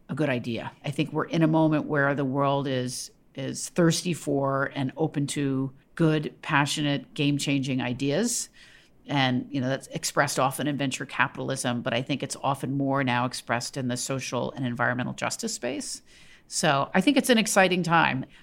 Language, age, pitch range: English, 50-69, 140-165 Hz